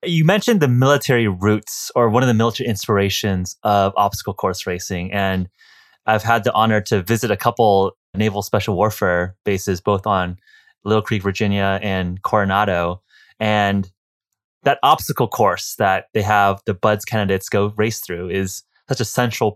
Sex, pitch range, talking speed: male, 95-115 Hz, 160 wpm